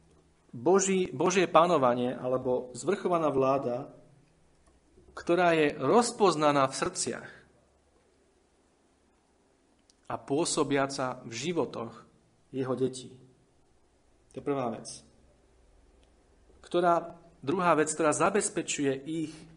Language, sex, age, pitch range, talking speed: Slovak, male, 40-59, 120-150 Hz, 85 wpm